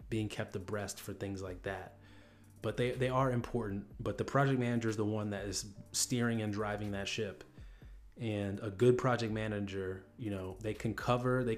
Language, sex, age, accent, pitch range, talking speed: English, male, 30-49, American, 100-115 Hz, 190 wpm